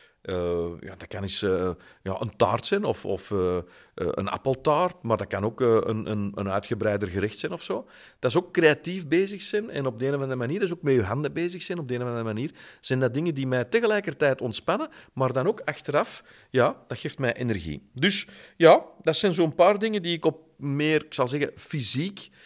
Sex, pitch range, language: male, 115-165 Hz, Dutch